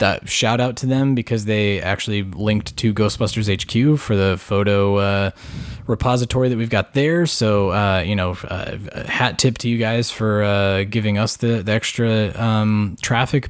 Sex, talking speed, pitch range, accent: male, 180 wpm, 100-125 Hz, American